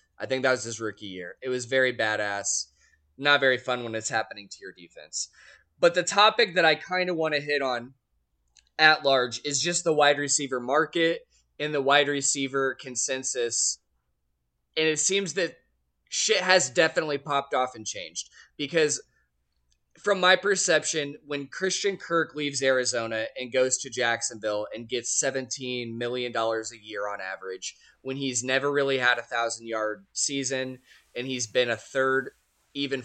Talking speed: 165 wpm